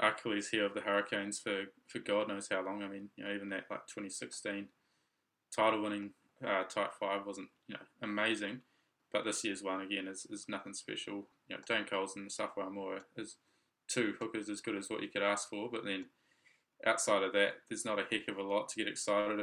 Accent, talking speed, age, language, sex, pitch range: Australian, 220 wpm, 20-39, English, male, 100-110 Hz